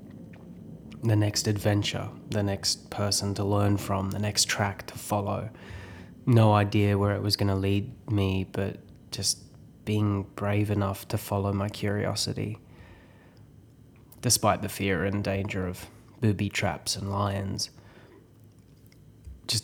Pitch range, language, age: 100-110 Hz, English, 20-39